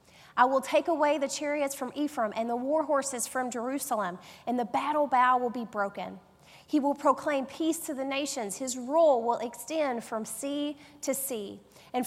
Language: English